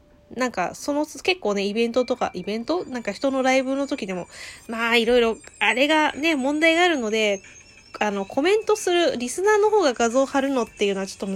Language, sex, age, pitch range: Japanese, female, 20-39, 205-285 Hz